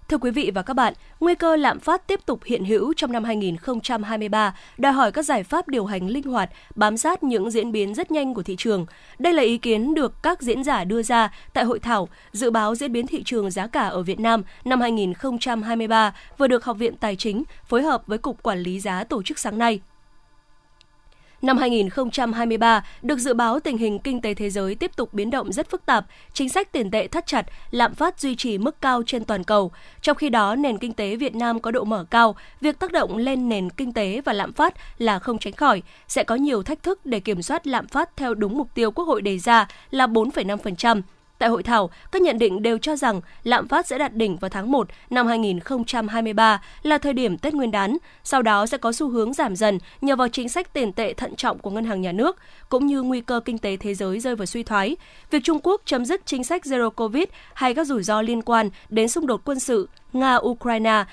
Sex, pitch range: female, 215-280 Hz